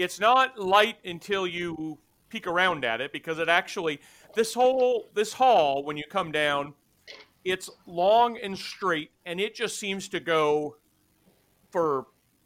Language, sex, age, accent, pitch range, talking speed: English, male, 40-59, American, 155-210 Hz, 150 wpm